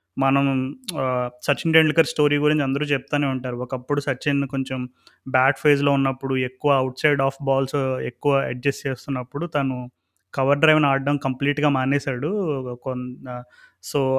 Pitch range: 135-160 Hz